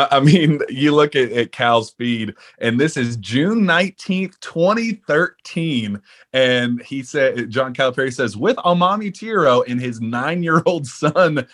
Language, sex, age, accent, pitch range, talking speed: English, male, 30-49, American, 110-145 Hz, 150 wpm